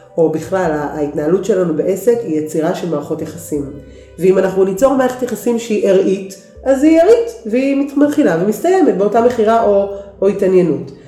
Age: 30-49